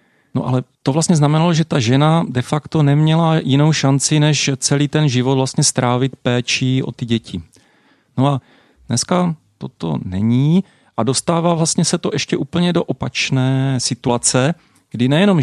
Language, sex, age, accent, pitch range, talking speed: Czech, male, 40-59, native, 125-155 Hz, 155 wpm